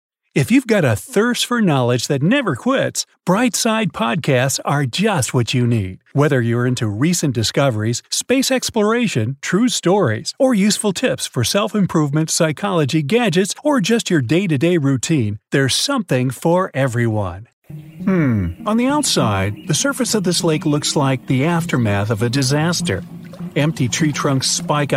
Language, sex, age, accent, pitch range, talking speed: English, male, 50-69, American, 125-185 Hz, 155 wpm